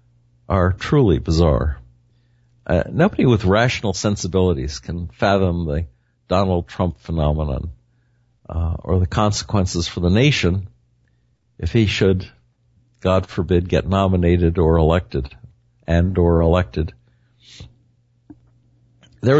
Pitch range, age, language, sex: 85-120 Hz, 60-79, English, male